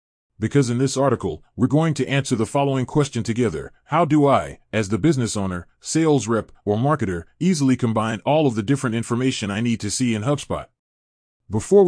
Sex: male